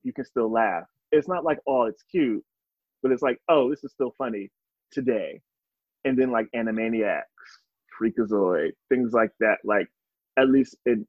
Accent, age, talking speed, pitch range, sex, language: American, 20-39, 170 wpm, 115-150 Hz, male, English